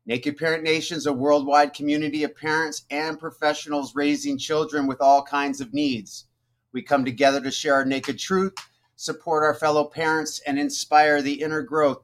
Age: 30-49